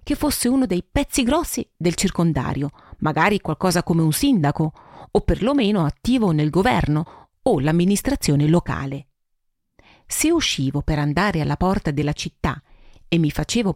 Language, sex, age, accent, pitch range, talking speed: Italian, female, 40-59, native, 155-220 Hz, 140 wpm